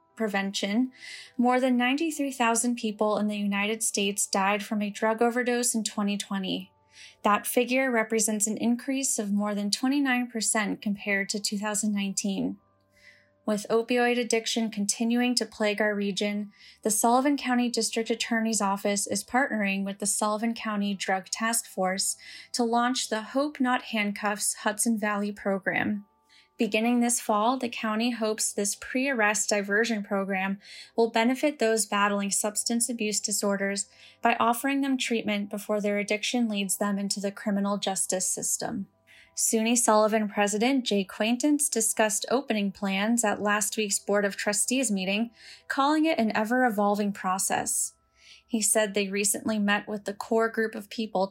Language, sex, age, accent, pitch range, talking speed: English, female, 10-29, American, 205-235 Hz, 145 wpm